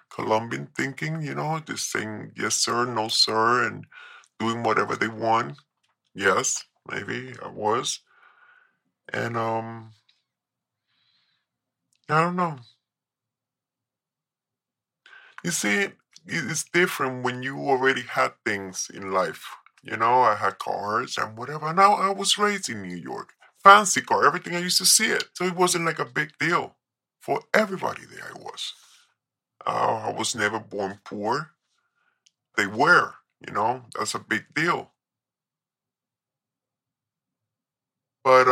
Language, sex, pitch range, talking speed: English, female, 110-145 Hz, 130 wpm